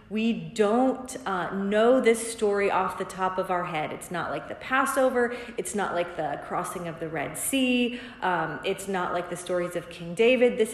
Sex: female